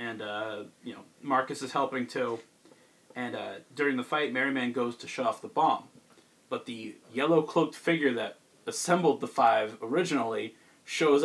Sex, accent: male, American